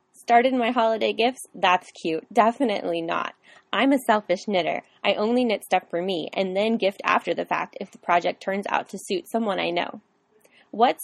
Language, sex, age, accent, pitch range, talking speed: English, female, 20-39, American, 185-230 Hz, 190 wpm